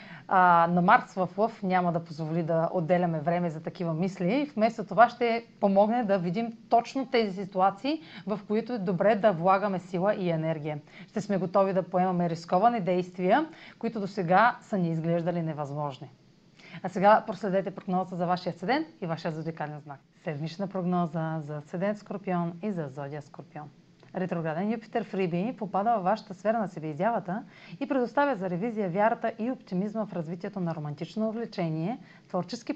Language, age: Bulgarian, 30-49